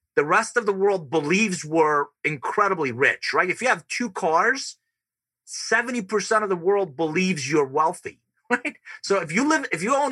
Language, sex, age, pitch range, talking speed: English, male, 30-49, 155-220 Hz, 180 wpm